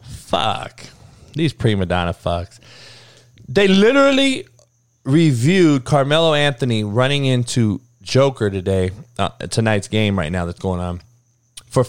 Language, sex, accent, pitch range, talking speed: English, male, American, 110-135 Hz, 115 wpm